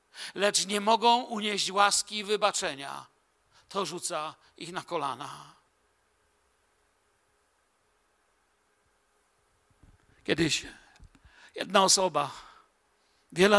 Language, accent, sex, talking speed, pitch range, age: Polish, native, male, 70 wpm, 180-240 Hz, 50-69